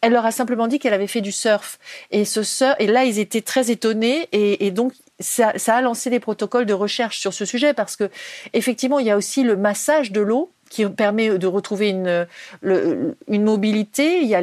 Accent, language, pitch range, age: French, French, 205-255 Hz, 40-59